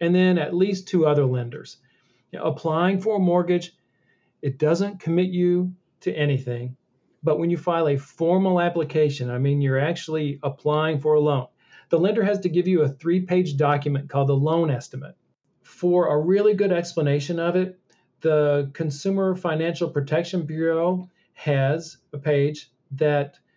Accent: American